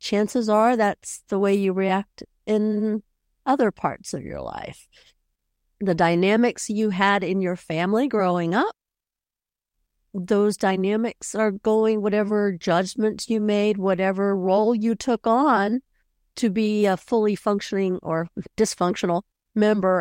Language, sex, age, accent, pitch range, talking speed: English, female, 50-69, American, 175-220 Hz, 130 wpm